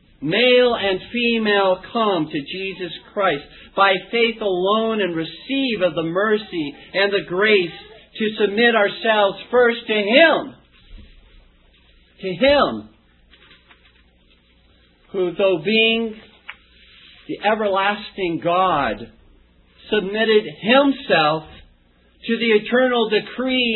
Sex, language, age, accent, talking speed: male, English, 50-69, American, 95 wpm